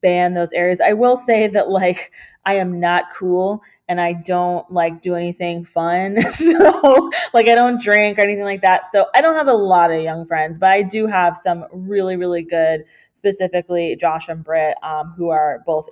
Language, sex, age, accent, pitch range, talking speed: English, female, 20-39, American, 170-225 Hz, 195 wpm